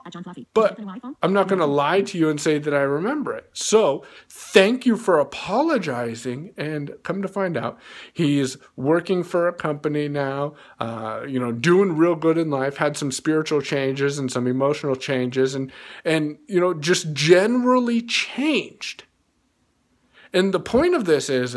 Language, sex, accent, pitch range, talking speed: English, male, American, 145-210 Hz, 165 wpm